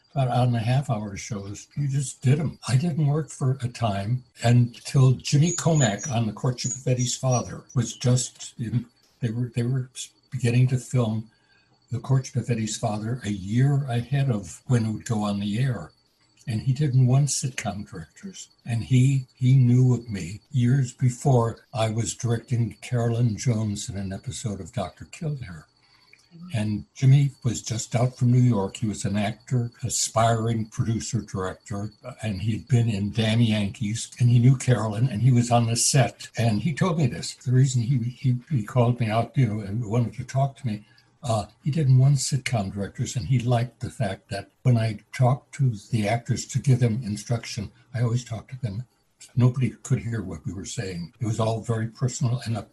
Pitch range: 110-130 Hz